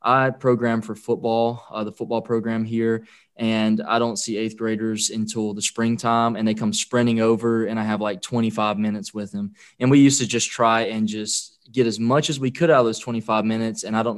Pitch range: 110-120 Hz